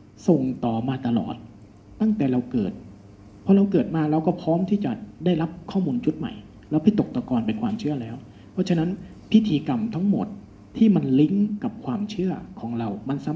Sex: male